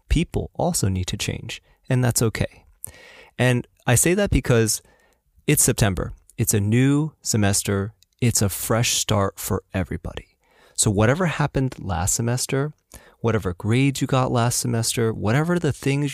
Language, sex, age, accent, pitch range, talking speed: English, male, 30-49, American, 95-130 Hz, 145 wpm